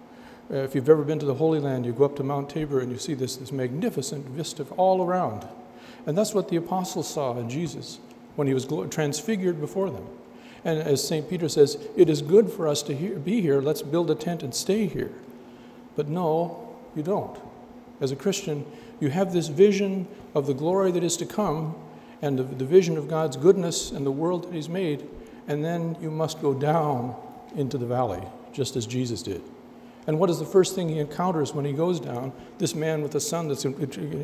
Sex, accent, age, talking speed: male, American, 60-79, 210 wpm